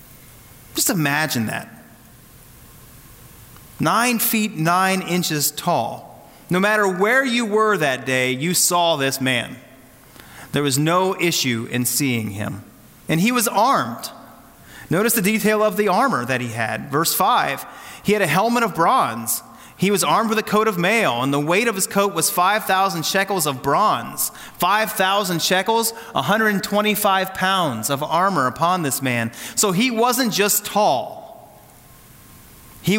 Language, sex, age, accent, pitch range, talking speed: English, male, 30-49, American, 140-200 Hz, 145 wpm